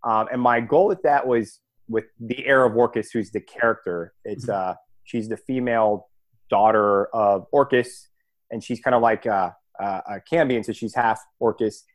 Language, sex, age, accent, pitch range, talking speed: English, male, 30-49, American, 105-130 Hz, 180 wpm